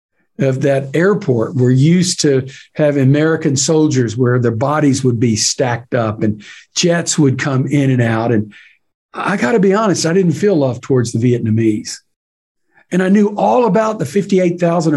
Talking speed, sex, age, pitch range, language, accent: 170 wpm, male, 50-69, 130-180 Hz, English, American